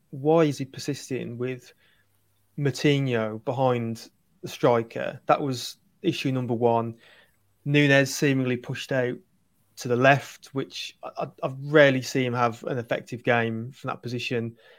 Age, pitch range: 30-49, 120-150 Hz